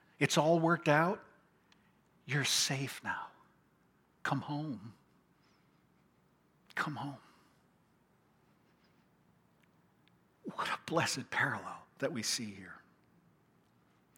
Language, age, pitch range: English, 60-79, 135-200 Hz